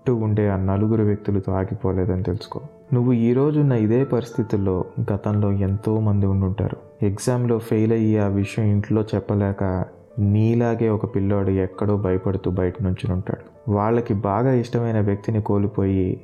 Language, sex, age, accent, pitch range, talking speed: Telugu, male, 20-39, native, 100-115 Hz, 135 wpm